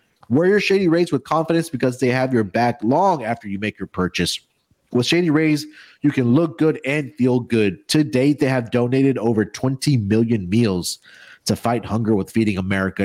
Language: English